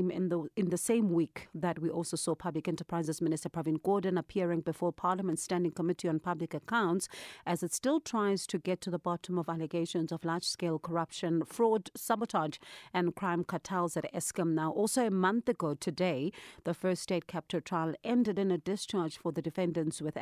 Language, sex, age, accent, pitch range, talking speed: English, female, 40-59, South African, 165-190 Hz, 185 wpm